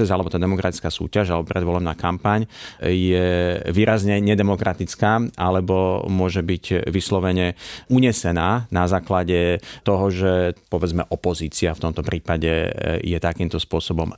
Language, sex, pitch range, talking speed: Slovak, male, 85-100 Hz, 115 wpm